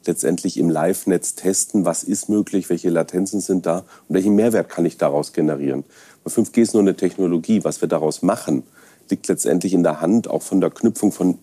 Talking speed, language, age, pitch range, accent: 195 wpm, German, 40-59, 85-100 Hz, German